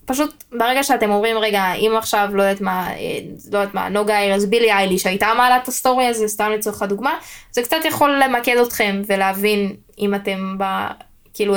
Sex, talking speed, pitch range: female, 160 wpm, 195-220 Hz